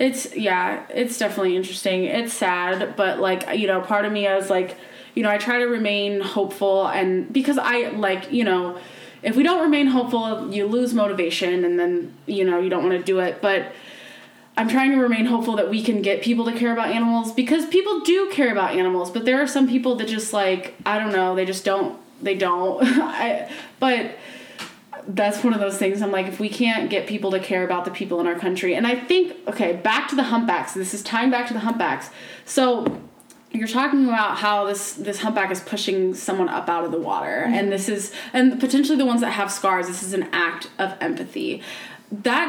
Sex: female